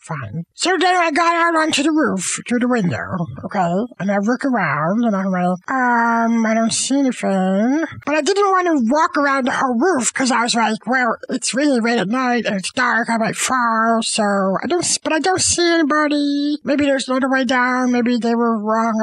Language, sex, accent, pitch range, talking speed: English, male, American, 230-330 Hz, 220 wpm